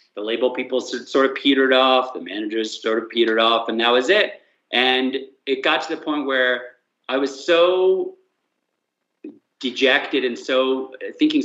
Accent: American